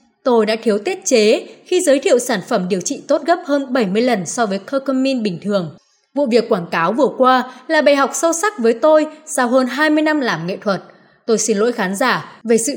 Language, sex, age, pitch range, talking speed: Vietnamese, female, 20-39, 200-275 Hz, 230 wpm